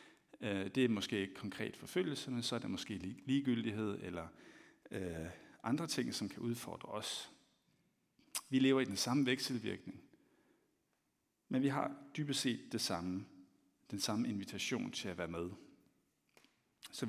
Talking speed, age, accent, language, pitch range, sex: 140 wpm, 60-79, native, Danish, 100-130 Hz, male